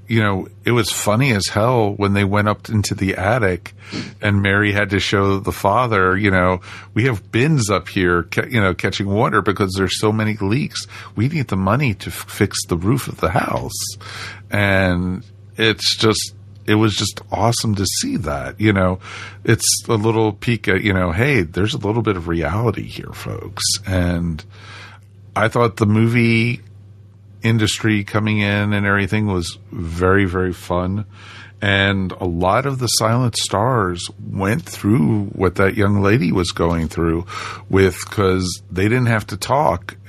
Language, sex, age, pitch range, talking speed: English, male, 50-69, 95-110 Hz, 170 wpm